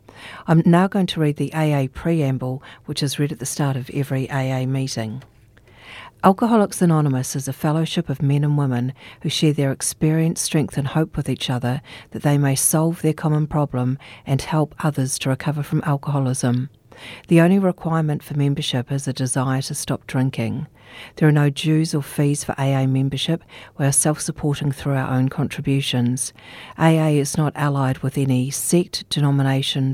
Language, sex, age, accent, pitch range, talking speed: English, female, 50-69, Australian, 130-155 Hz, 170 wpm